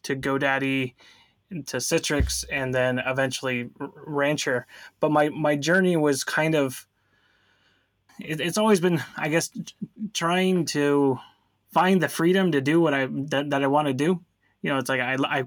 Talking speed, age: 155 wpm, 20-39